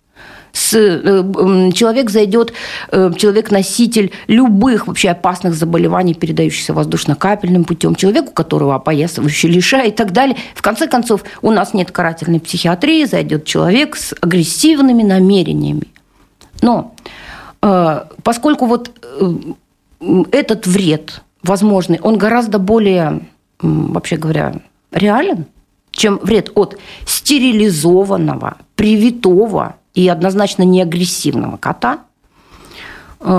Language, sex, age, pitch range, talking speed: Russian, female, 40-59, 180-230 Hz, 95 wpm